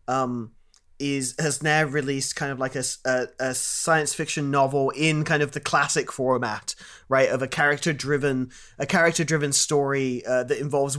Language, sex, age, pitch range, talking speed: English, male, 30-49, 135-165 Hz, 175 wpm